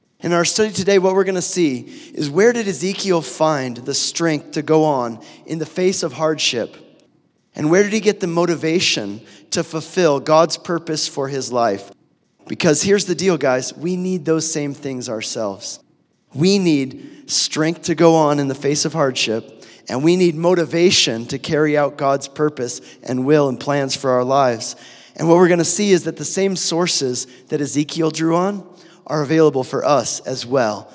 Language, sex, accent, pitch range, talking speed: English, male, American, 145-175 Hz, 190 wpm